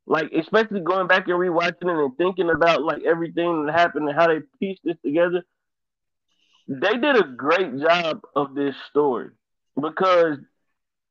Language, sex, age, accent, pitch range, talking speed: English, male, 20-39, American, 160-215 Hz, 155 wpm